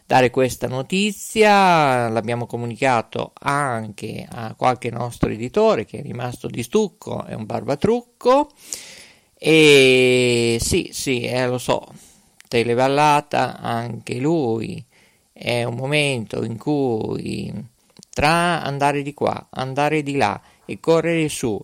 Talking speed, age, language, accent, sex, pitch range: 115 wpm, 50-69, Italian, native, male, 120-160 Hz